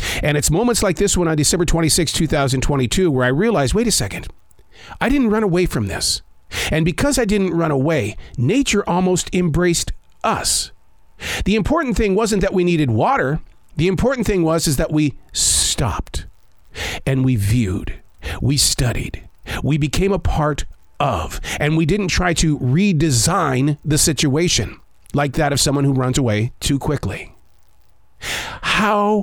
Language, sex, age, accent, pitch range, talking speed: English, male, 50-69, American, 105-175 Hz, 155 wpm